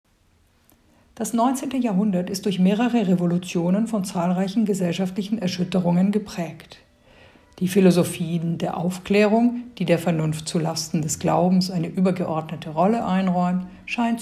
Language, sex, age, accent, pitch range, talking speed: German, female, 50-69, German, 165-200 Hz, 115 wpm